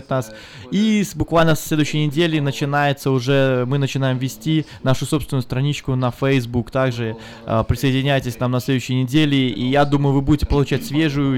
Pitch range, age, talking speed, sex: 130-155 Hz, 20-39, 160 wpm, male